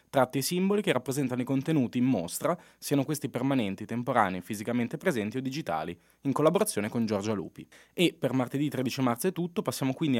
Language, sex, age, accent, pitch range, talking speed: Italian, male, 20-39, native, 110-145 Hz, 180 wpm